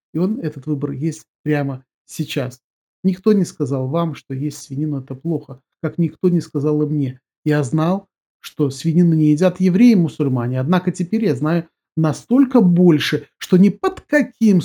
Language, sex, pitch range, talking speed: Russian, male, 140-170 Hz, 170 wpm